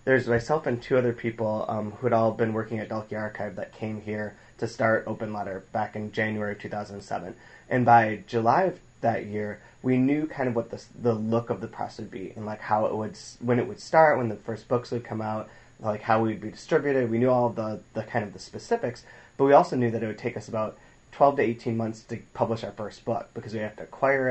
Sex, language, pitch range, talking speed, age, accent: male, English, 110-120 Hz, 250 wpm, 30-49, American